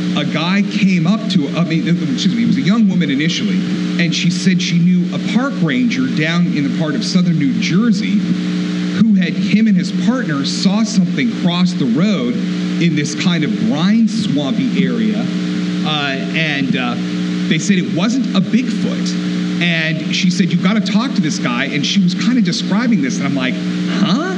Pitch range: 170-205 Hz